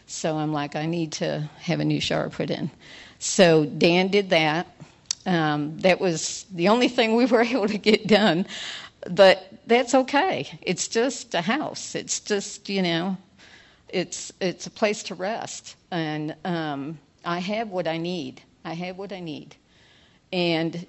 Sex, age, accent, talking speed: female, 50-69, American, 165 wpm